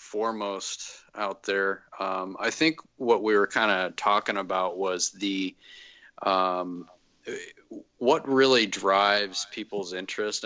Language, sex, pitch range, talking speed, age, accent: English, male, 95-110 Hz, 120 wpm, 30-49, American